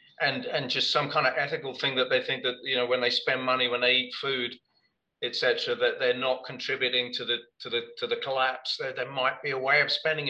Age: 40-59